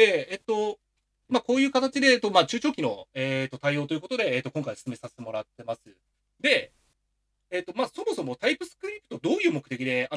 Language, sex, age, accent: Japanese, male, 30-49, native